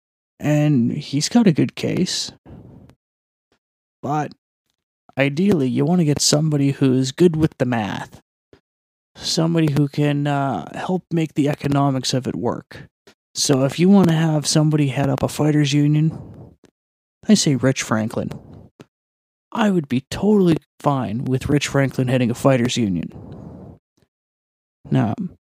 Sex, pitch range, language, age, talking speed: male, 130-150 Hz, English, 30-49, 135 wpm